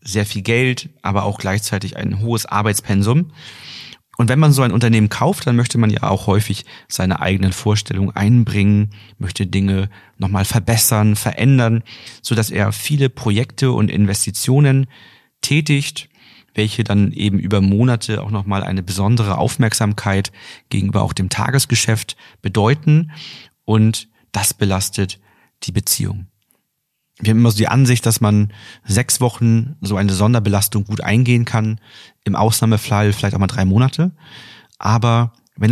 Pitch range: 100-125 Hz